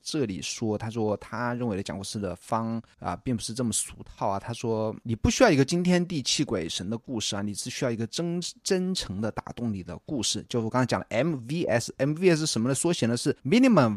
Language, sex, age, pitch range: Chinese, male, 20-39, 105-140 Hz